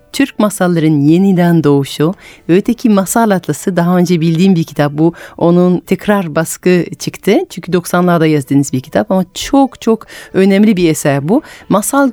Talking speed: 150 wpm